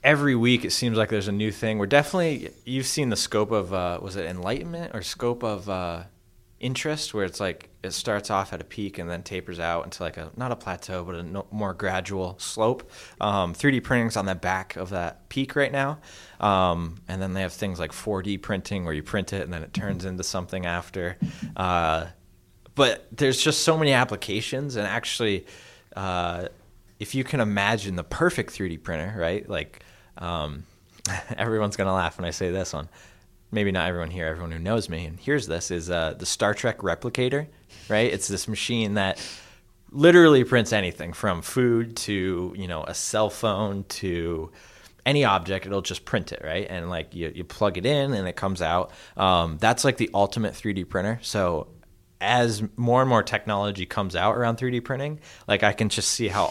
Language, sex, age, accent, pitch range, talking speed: English, male, 20-39, American, 90-115 Hz, 195 wpm